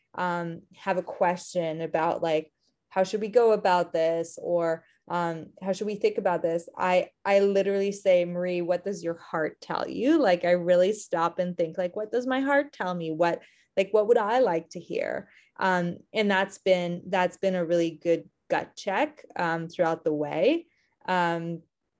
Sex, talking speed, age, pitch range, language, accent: female, 185 wpm, 20-39, 170-195 Hz, English, American